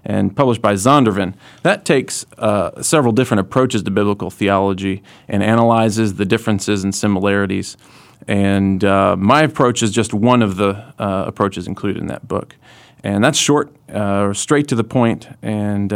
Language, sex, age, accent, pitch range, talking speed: English, male, 40-59, American, 95-115 Hz, 160 wpm